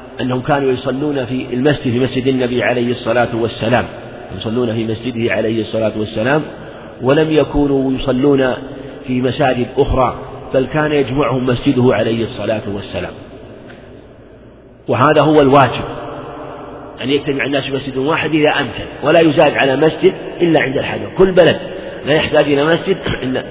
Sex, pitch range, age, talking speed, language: male, 125-145 Hz, 50-69, 135 wpm, Arabic